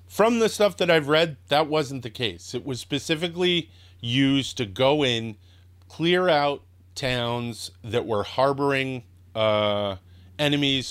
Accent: American